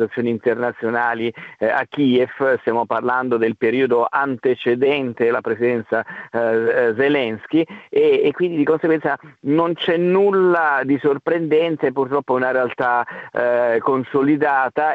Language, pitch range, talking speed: Italian, 120-145 Hz, 100 wpm